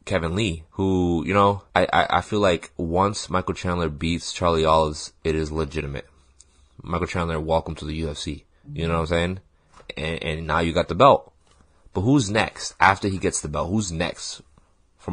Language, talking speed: English, 190 wpm